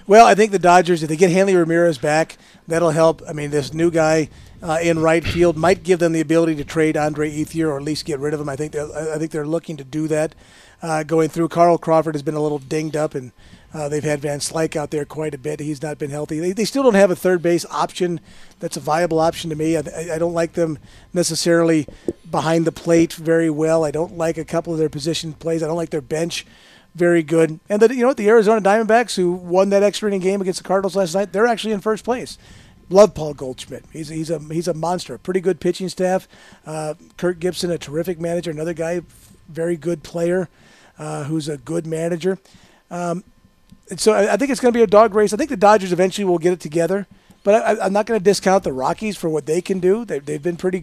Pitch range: 155-185 Hz